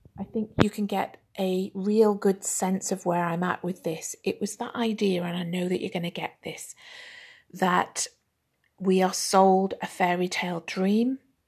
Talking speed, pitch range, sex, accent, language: 190 wpm, 180-215 Hz, female, British, English